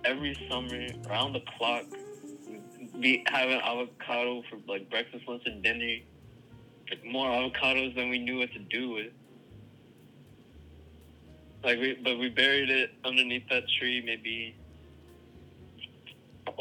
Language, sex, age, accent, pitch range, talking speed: English, male, 20-39, American, 100-125 Hz, 130 wpm